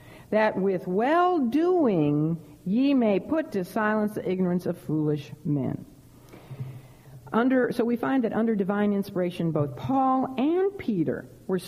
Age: 60-79